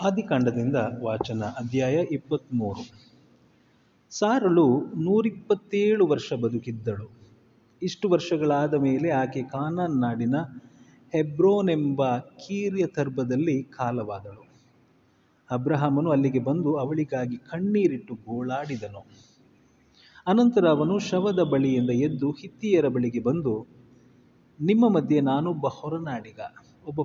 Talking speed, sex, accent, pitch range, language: 80 wpm, male, native, 125-175 Hz, Kannada